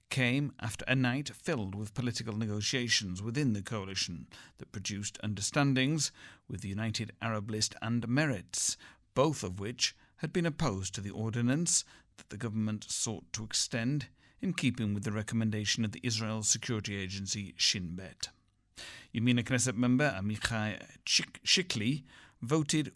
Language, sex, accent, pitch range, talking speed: English, male, British, 100-125 Hz, 140 wpm